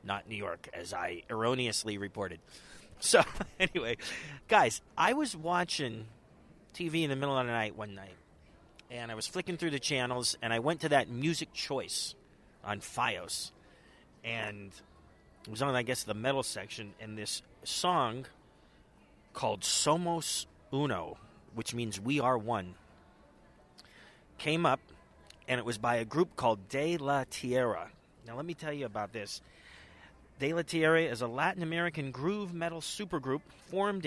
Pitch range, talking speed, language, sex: 110-150 Hz, 155 wpm, English, male